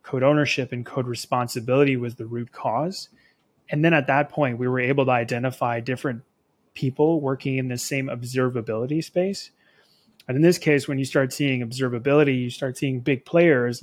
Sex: male